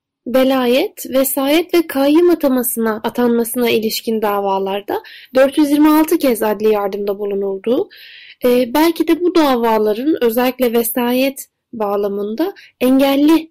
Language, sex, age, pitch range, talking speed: Turkish, female, 10-29, 230-315 Hz, 95 wpm